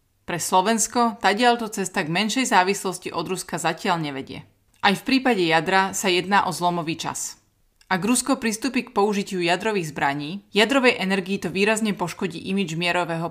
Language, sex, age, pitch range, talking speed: Slovak, female, 30-49, 170-220 Hz, 155 wpm